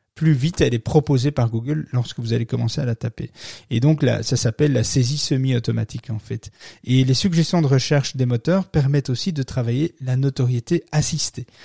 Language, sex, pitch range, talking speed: French, male, 120-150 Hz, 195 wpm